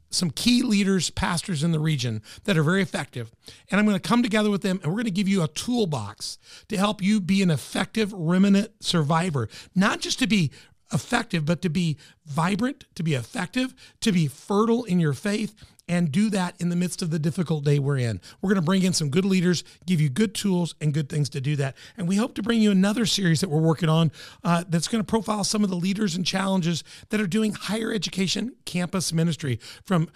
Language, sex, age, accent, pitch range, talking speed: English, male, 40-59, American, 155-195 Hz, 220 wpm